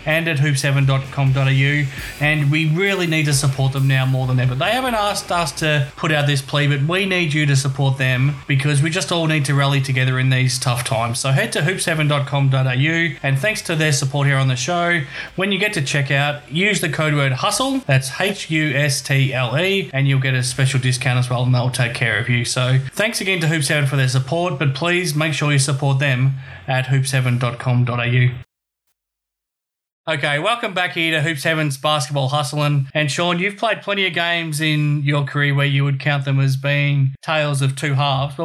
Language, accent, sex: English, Australian, male